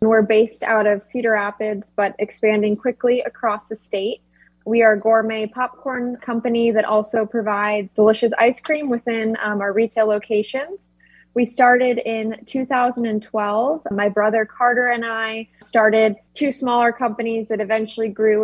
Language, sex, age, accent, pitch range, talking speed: English, female, 20-39, American, 210-240 Hz, 145 wpm